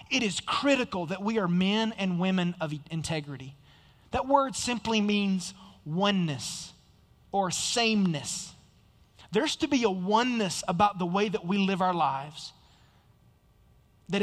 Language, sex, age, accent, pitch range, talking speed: English, male, 30-49, American, 155-215 Hz, 135 wpm